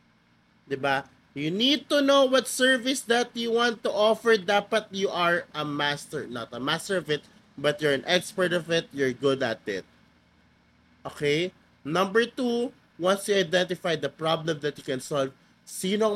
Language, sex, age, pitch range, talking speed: Filipino, male, 20-39, 130-200 Hz, 170 wpm